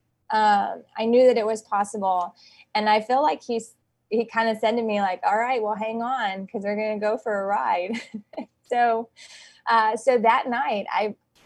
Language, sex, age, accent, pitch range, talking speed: English, female, 20-39, American, 195-220 Hz, 200 wpm